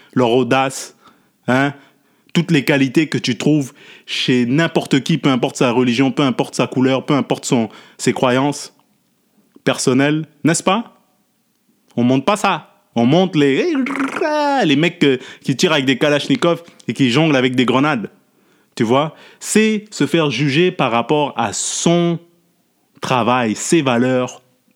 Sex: male